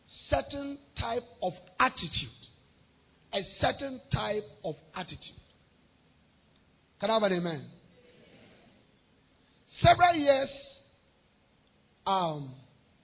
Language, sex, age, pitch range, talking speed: English, male, 50-69, 145-235 Hz, 80 wpm